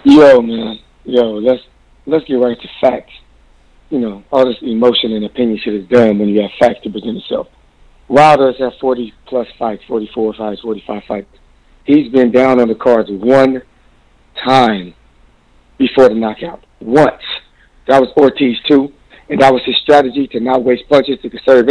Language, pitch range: English, 120-175 Hz